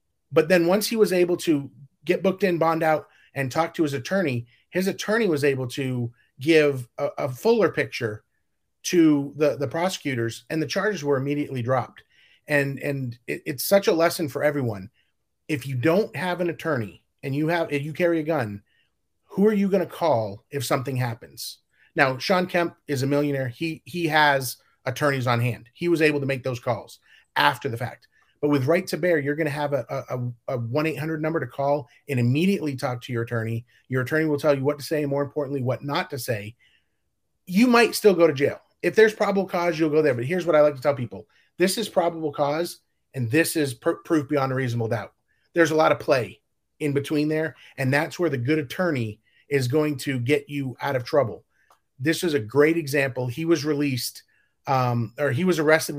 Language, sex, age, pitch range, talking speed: English, male, 30-49, 130-165 Hz, 210 wpm